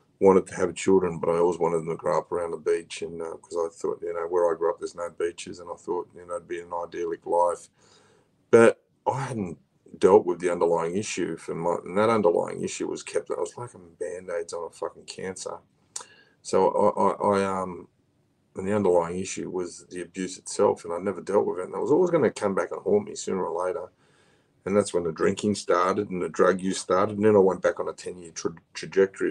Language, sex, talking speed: English, male, 245 wpm